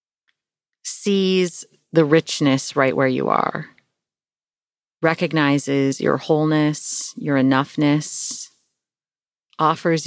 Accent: American